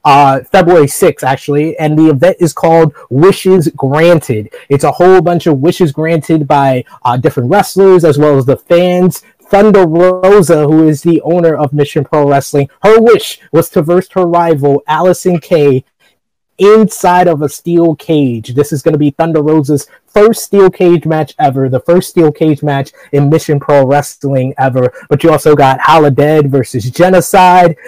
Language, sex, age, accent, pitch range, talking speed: English, male, 20-39, American, 140-175 Hz, 175 wpm